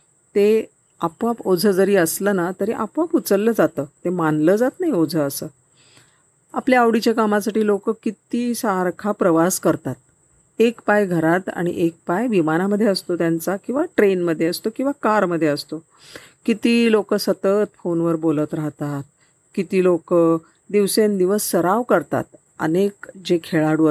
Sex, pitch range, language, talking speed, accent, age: female, 165-215 Hz, Marathi, 135 wpm, native, 40-59